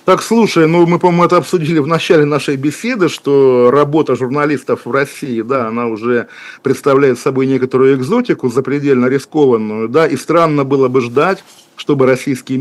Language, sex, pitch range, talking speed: Russian, male, 120-150 Hz, 155 wpm